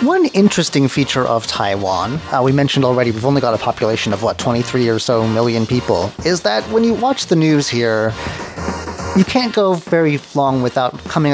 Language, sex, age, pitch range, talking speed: English, male, 30-49, 120-165 Hz, 190 wpm